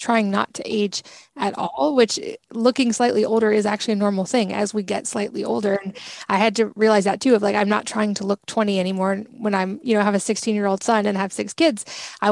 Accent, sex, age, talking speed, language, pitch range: American, female, 20-39, 250 wpm, English, 200-225 Hz